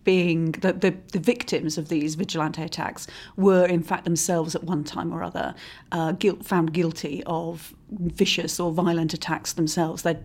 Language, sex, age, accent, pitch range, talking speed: English, female, 40-59, British, 160-180 Hz, 170 wpm